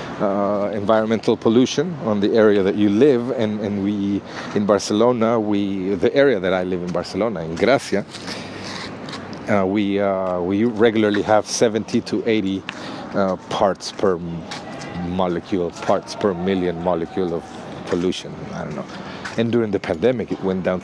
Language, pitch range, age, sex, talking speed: English, 95-125 Hz, 50-69, male, 155 wpm